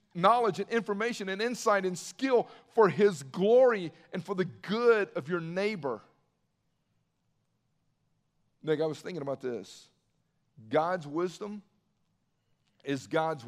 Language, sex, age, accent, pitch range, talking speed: English, male, 50-69, American, 140-190 Hz, 120 wpm